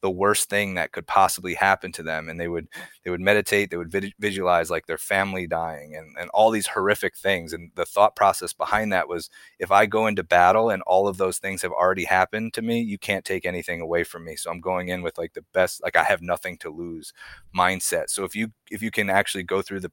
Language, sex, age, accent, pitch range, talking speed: English, male, 30-49, American, 85-100 Hz, 245 wpm